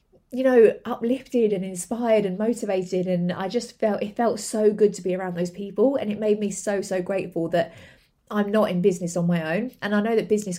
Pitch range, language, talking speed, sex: 180-220 Hz, English, 225 wpm, female